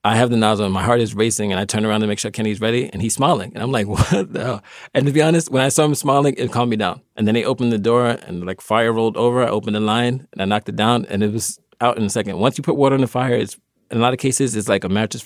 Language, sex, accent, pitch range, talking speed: English, male, American, 95-115 Hz, 330 wpm